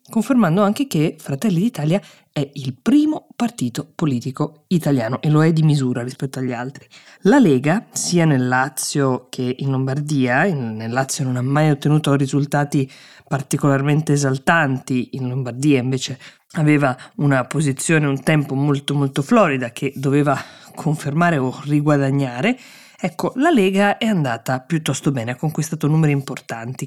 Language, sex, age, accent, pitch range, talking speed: Italian, female, 20-39, native, 135-165 Hz, 140 wpm